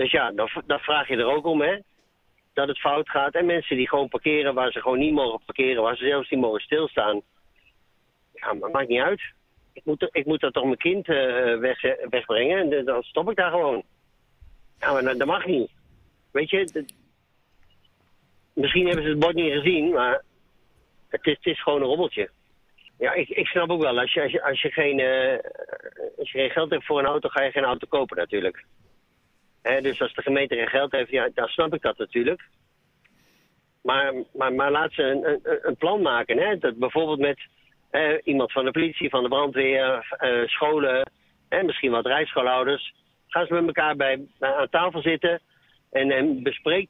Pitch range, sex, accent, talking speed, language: 135-195 Hz, male, Dutch, 190 wpm, Dutch